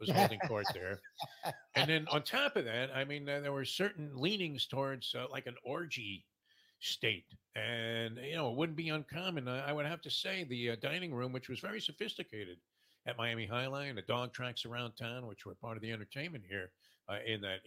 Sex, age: male, 50-69